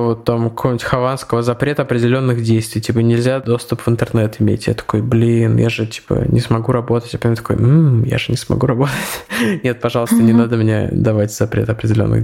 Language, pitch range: Russian, 115-135 Hz